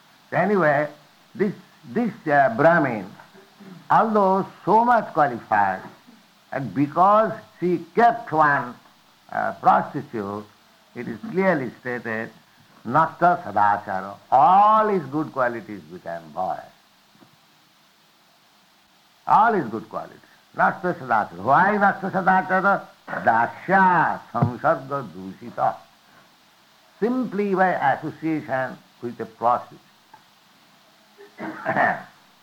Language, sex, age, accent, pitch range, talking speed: English, male, 60-79, Indian, 145-190 Hz, 80 wpm